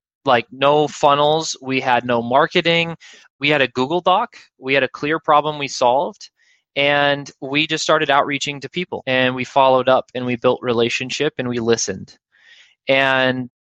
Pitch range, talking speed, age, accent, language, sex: 120-150 Hz, 170 wpm, 20-39, American, English, male